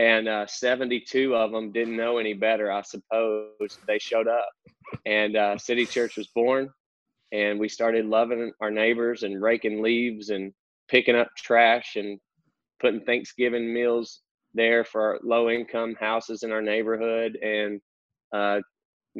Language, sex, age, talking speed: English, male, 20-39, 145 wpm